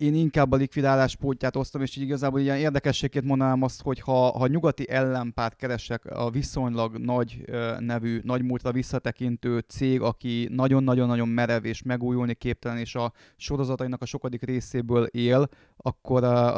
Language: Hungarian